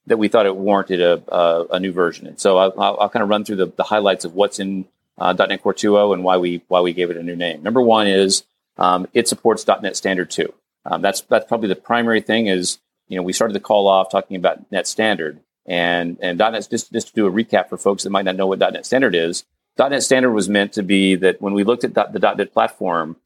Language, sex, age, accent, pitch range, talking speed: English, male, 40-59, American, 90-115 Hz, 260 wpm